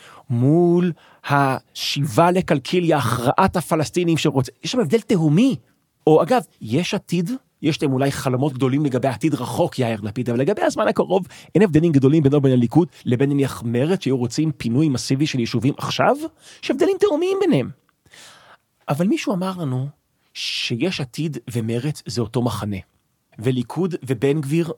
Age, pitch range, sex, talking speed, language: 30-49, 125-180 Hz, male, 145 wpm, Hebrew